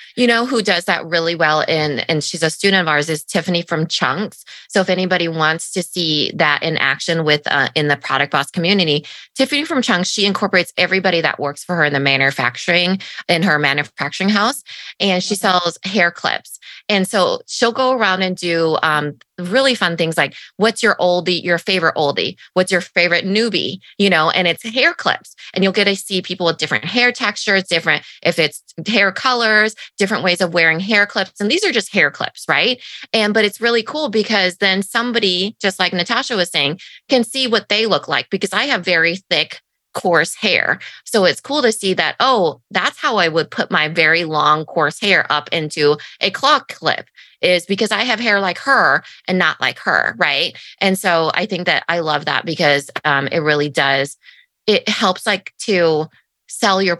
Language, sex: English, female